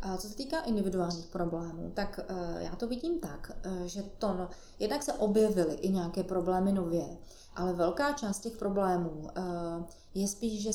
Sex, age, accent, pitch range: female, 30-49, native, 175-200 Hz